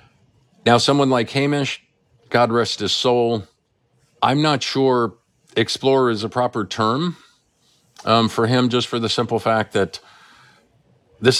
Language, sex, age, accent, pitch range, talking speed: English, male, 50-69, American, 95-125 Hz, 135 wpm